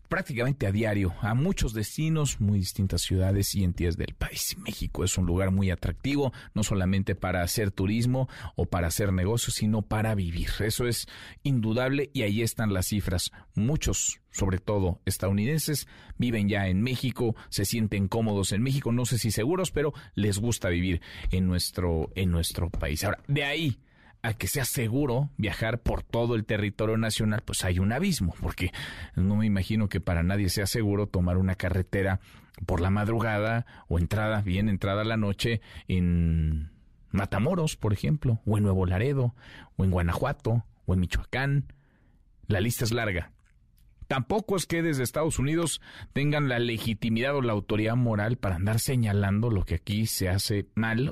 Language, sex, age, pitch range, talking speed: Spanish, male, 40-59, 95-120 Hz, 170 wpm